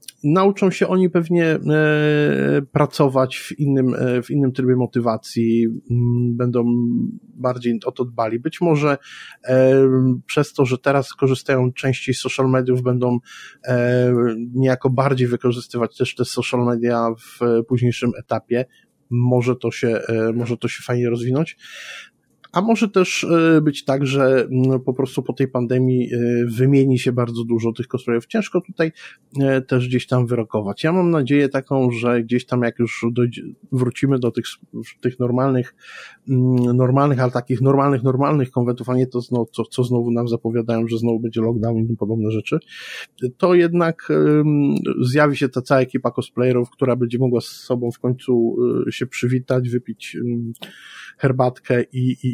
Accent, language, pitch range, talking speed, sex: native, Polish, 120-135 Hz, 145 wpm, male